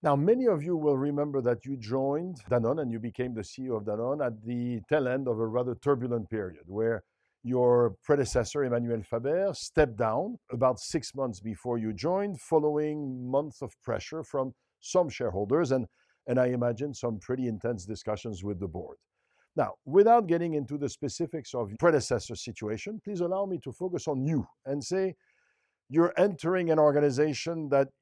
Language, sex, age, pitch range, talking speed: English, male, 50-69, 115-155 Hz, 175 wpm